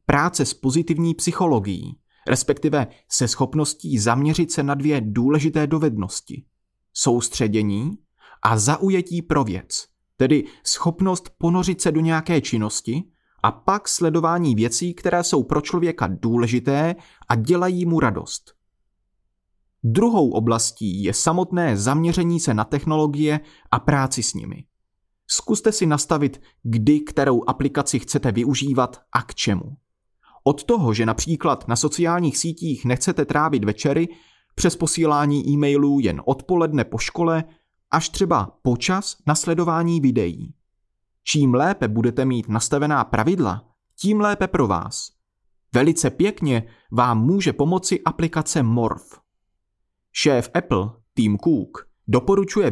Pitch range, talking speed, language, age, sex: 115-165 Hz, 120 wpm, Czech, 30-49, male